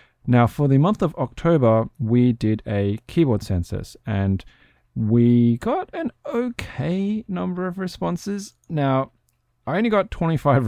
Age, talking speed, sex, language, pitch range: 20-39, 135 wpm, male, English, 100-130 Hz